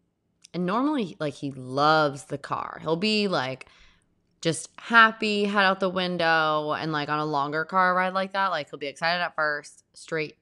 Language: English